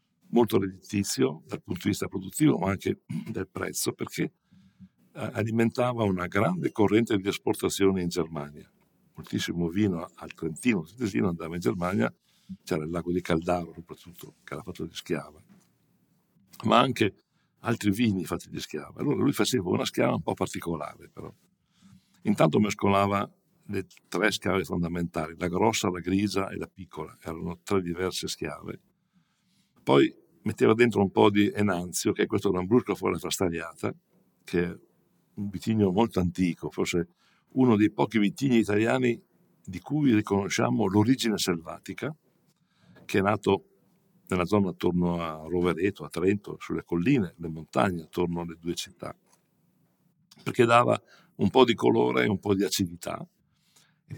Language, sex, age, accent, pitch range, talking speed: English, male, 60-79, Italian, 90-115 Hz, 150 wpm